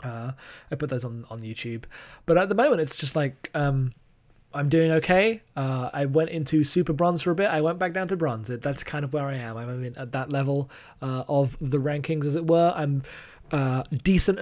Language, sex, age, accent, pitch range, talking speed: English, male, 20-39, British, 130-160 Hz, 225 wpm